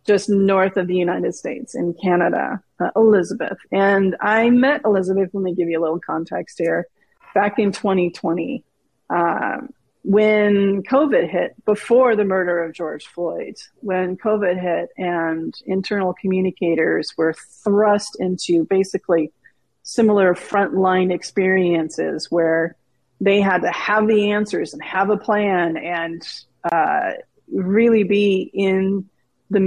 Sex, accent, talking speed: female, American, 130 wpm